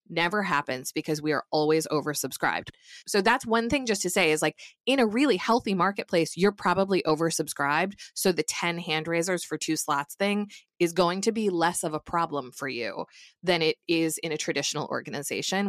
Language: English